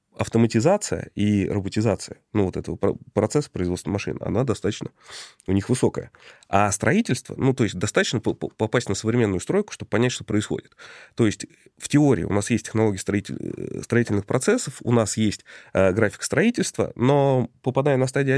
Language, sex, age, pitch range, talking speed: Russian, male, 20-39, 100-130 Hz, 155 wpm